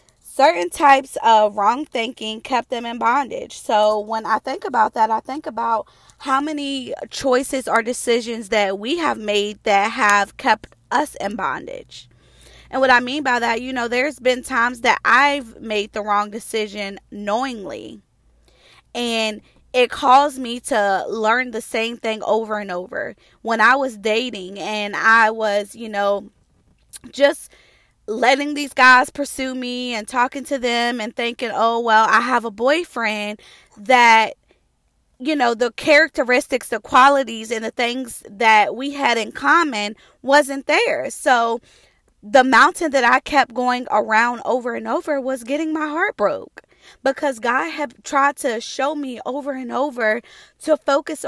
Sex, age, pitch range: female, 20-39, 220-275 Hz